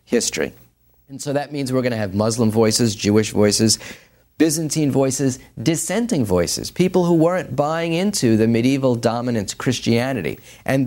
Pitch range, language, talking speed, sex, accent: 110-140 Hz, English, 150 wpm, male, American